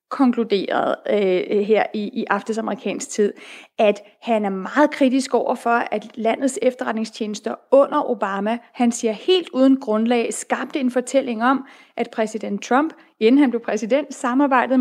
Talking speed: 150 wpm